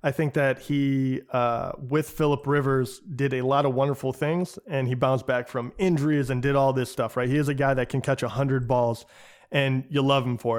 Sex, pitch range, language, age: male, 125-145 Hz, English, 20-39